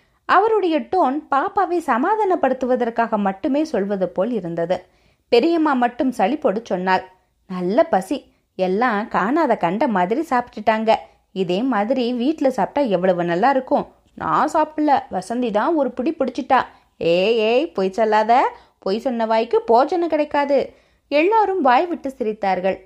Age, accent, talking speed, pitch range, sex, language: 20-39, native, 120 wpm, 205-290 Hz, female, Tamil